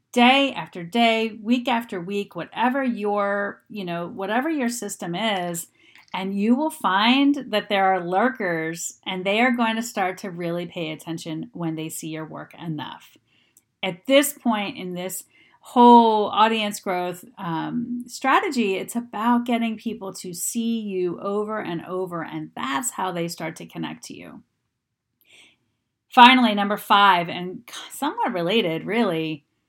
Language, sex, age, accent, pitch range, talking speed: English, female, 40-59, American, 175-235 Hz, 150 wpm